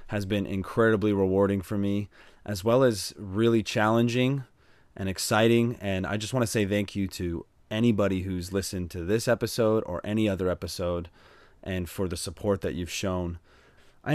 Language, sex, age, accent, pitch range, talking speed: English, male, 20-39, American, 95-120 Hz, 170 wpm